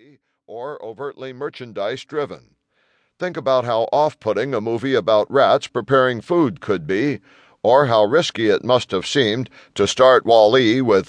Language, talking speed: English, 140 wpm